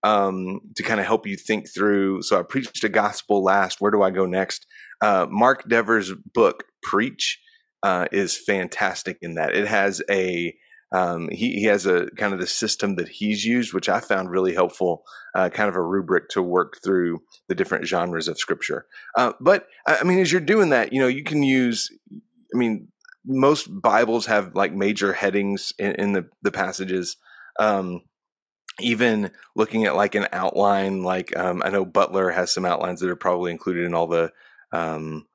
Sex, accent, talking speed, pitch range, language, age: male, American, 190 wpm, 90-120 Hz, English, 30-49